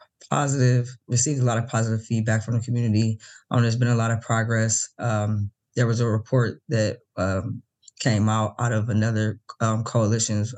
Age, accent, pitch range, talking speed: 10-29, American, 110-120 Hz, 175 wpm